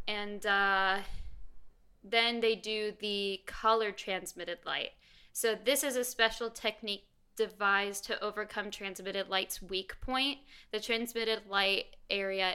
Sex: female